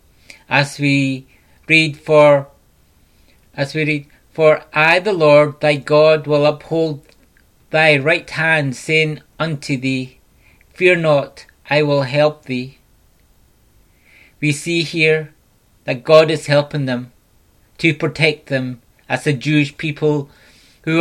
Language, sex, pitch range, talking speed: English, male, 140-160 Hz, 125 wpm